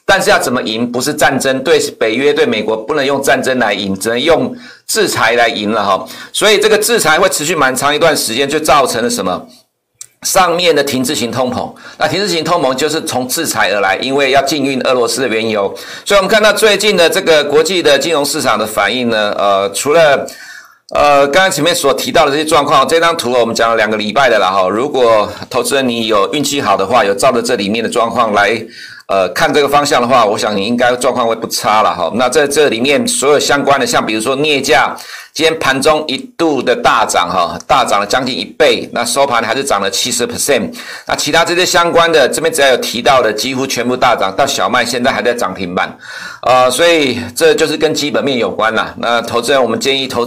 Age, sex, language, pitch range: 60-79, male, Chinese, 120-165 Hz